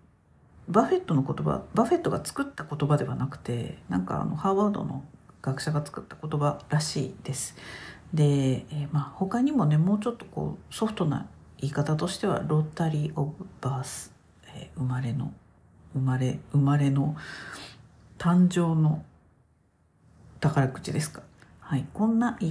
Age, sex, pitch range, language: 50-69, female, 135-165 Hz, Japanese